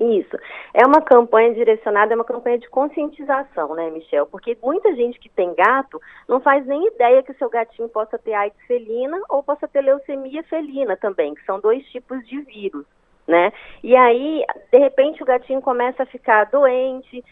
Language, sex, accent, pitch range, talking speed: Portuguese, female, Brazilian, 215-275 Hz, 180 wpm